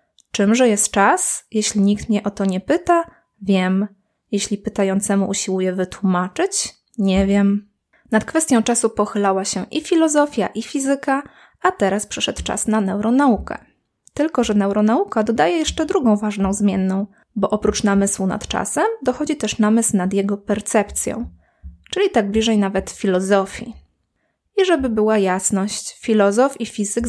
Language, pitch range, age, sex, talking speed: Polish, 200-245 Hz, 20-39, female, 140 wpm